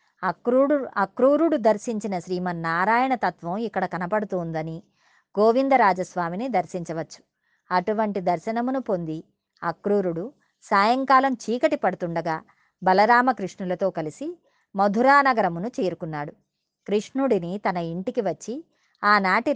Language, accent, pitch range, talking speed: Telugu, native, 175-235 Hz, 80 wpm